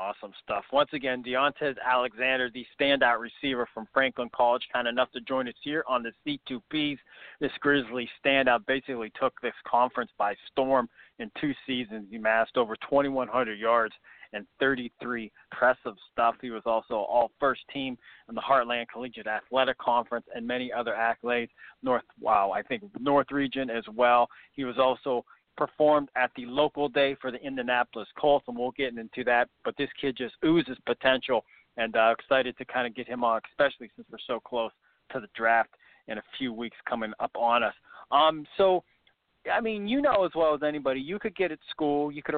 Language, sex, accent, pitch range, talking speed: English, male, American, 120-145 Hz, 190 wpm